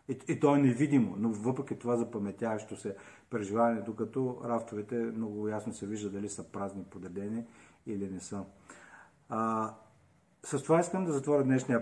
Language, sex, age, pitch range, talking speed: Bulgarian, male, 40-59, 115-140 Hz, 150 wpm